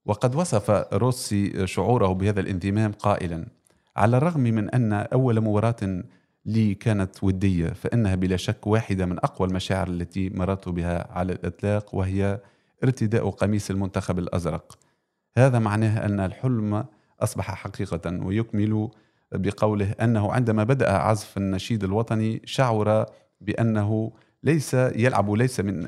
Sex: male